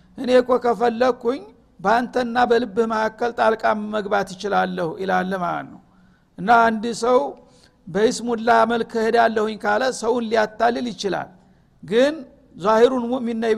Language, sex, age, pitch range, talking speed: Amharic, male, 60-79, 210-240 Hz, 95 wpm